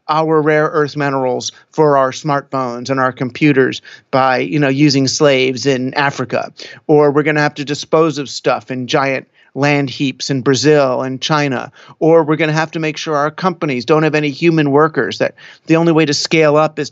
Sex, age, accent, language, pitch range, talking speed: male, 40-59, American, English, 135-165 Hz, 200 wpm